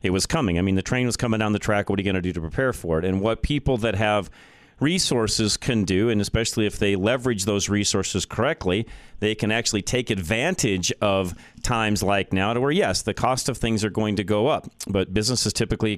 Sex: male